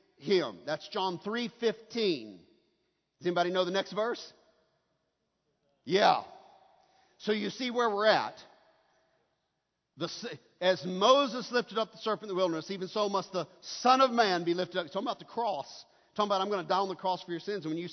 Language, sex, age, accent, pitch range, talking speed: English, male, 50-69, American, 175-235 Hz, 195 wpm